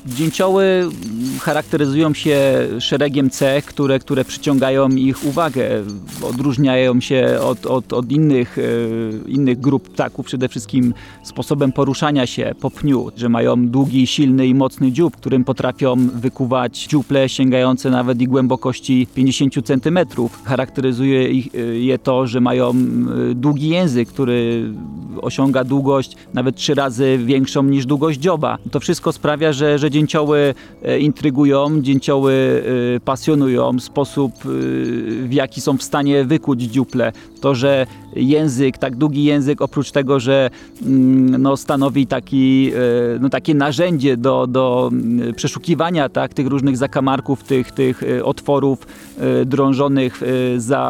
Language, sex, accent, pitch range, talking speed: English, male, Polish, 125-145 Hz, 120 wpm